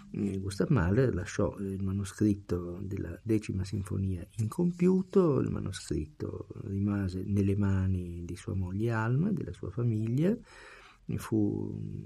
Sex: male